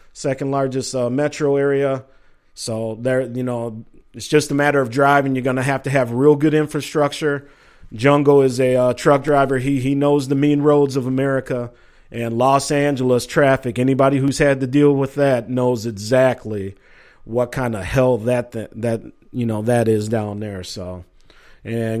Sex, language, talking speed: male, English, 175 wpm